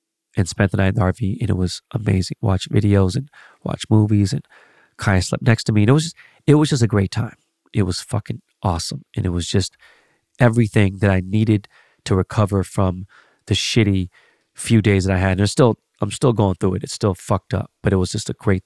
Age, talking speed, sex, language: 30-49, 230 wpm, male, English